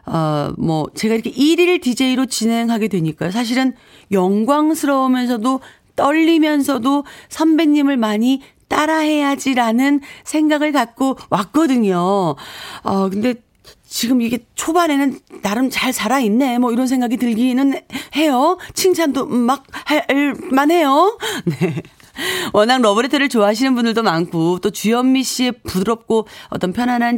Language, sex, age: Korean, female, 40-59